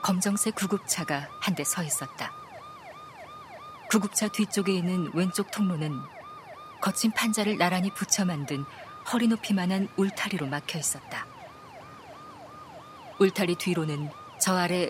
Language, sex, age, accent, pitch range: Korean, female, 40-59, native, 150-200 Hz